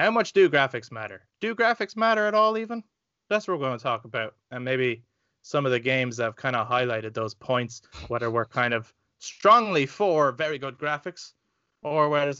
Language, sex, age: English, male, 20-39